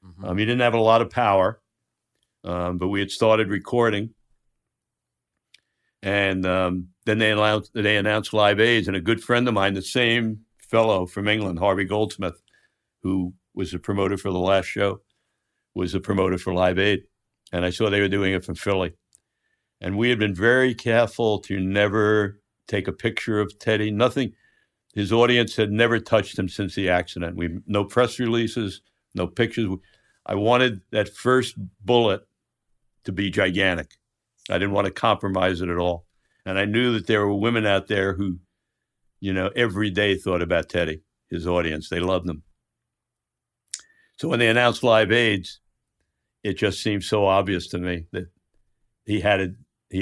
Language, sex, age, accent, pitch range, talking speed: English, male, 60-79, American, 95-115 Hz, 175 wpm